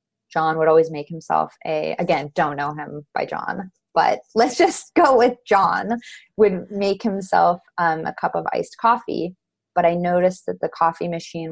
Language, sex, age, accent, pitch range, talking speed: English, female, 20-39, American, 160-200 Hz, 175 wpm